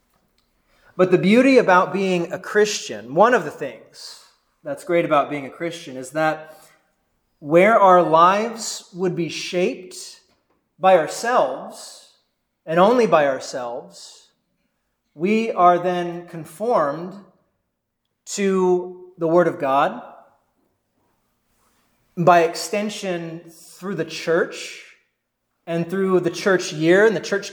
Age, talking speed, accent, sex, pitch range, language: 30-49, 115 wpm, American, male, 160-200 Hz, English